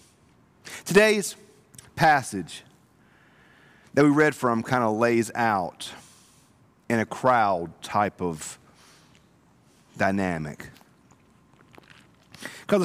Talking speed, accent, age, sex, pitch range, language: 80 wpm, American, 50-69, male, 100-140 Hz, English